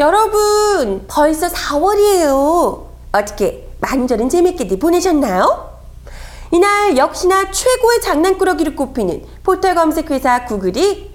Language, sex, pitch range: Korean, female, 295-395 Hz